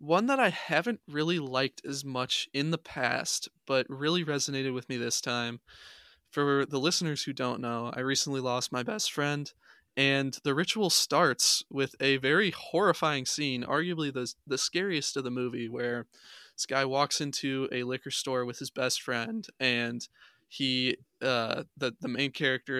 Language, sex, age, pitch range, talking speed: English, male, 20-39, 125-145 Hz, 170 wpm